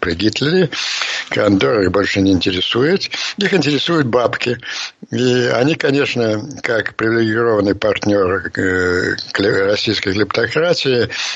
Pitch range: 95-125 Hz